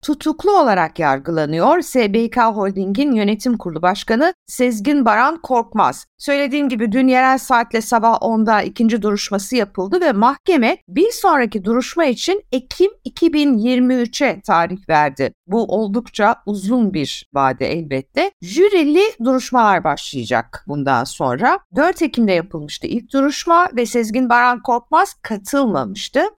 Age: 60-79